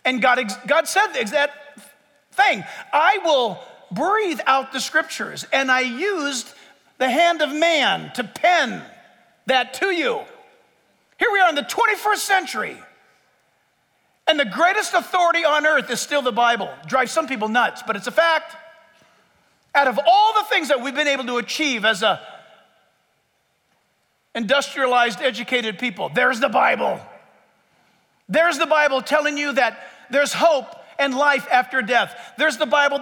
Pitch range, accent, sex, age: 250-315 Hz, American, male, 50-69